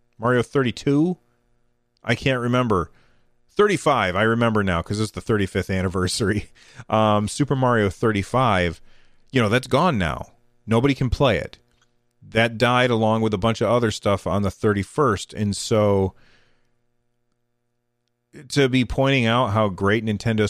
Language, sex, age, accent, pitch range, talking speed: English, male, 30-49, American, 100-120 Hz, 140 wpm